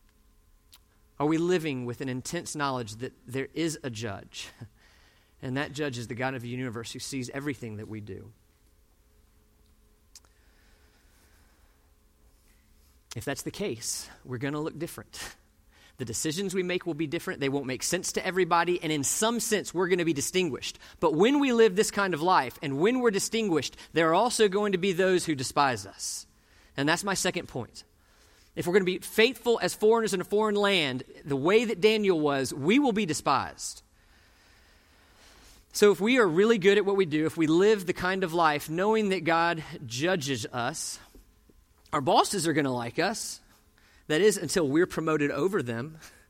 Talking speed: 185 wpm